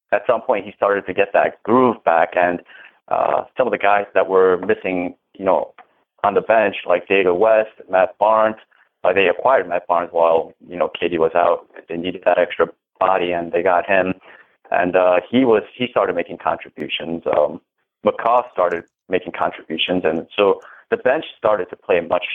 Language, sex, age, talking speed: English, male, 30-49, 190 wpm